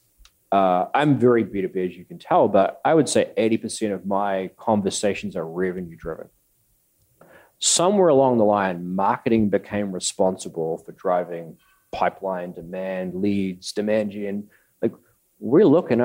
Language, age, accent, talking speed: English, 30-49, Australian, 130 wpm